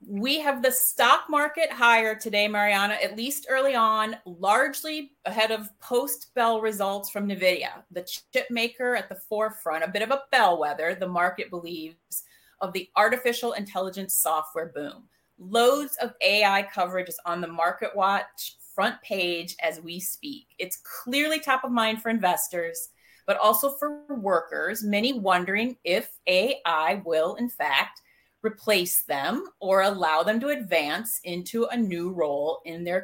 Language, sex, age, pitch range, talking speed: English, female, 30-49, 180-255 Hz, 155 wpm